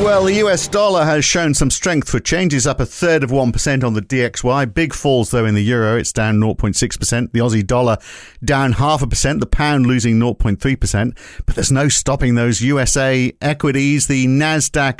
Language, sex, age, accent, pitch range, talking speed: English, male, 50-69, British, 105-140 Hz, 190 wpm